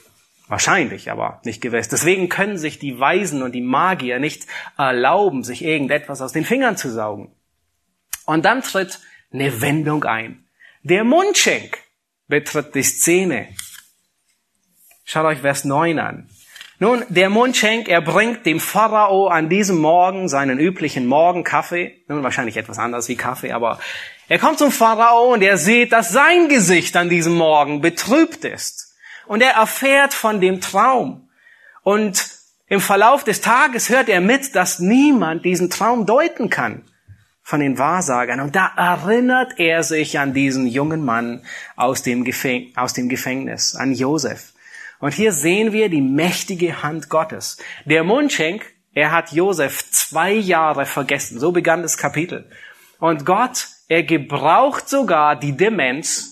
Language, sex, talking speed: German, male, 150 wpm